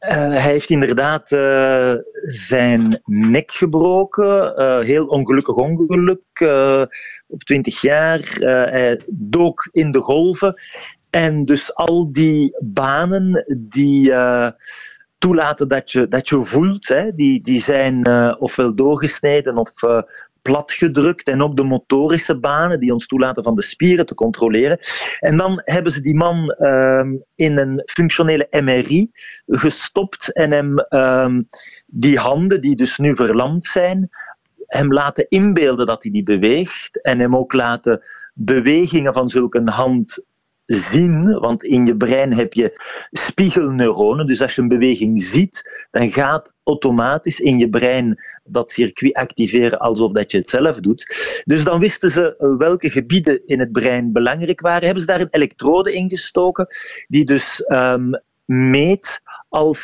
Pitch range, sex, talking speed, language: 125-175 Hz, male, 145 wpm, Dutch